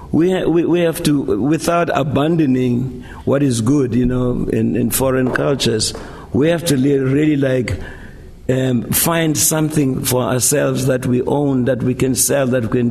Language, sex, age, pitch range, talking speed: English, male, 60-79, 115-135 Hz, 175 wpm